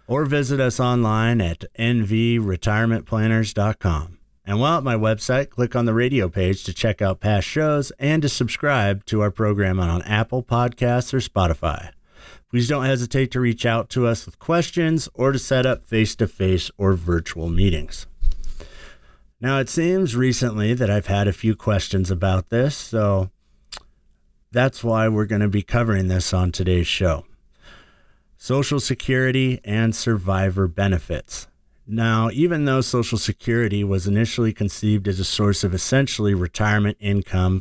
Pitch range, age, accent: 95-120 Hz, 50-69, American